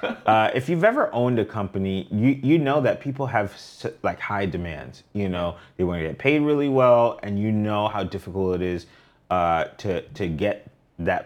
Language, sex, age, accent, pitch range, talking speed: English, male, 30-49, American, 95-120 Hz, 195 wpm